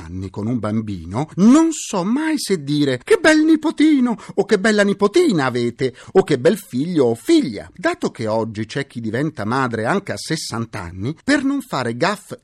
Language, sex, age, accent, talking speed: Italian, male, 50-69, native, 185 wpm